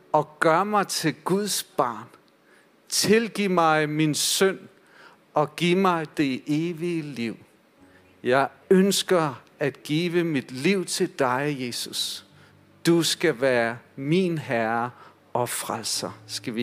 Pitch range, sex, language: 140-175 Hz, male, Danish